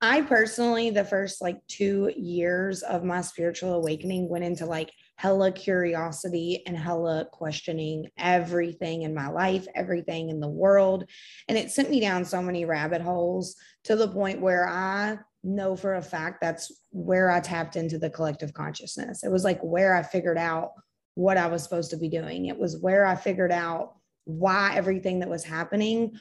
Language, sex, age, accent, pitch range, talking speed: English, female, 20-39, American, 170-195 Hz, 180 wpm